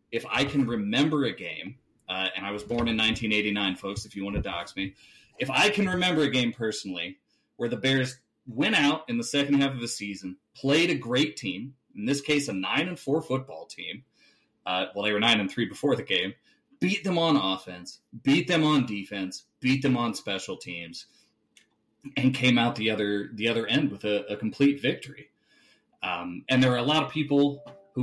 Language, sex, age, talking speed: English, male, 30-49, 210 wpm